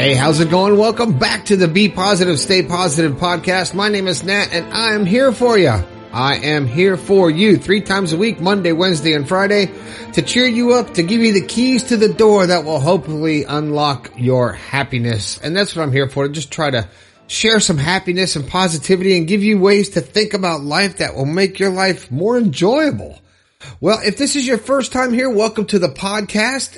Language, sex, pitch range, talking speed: English, male, 140-205 Hz, 215 wpm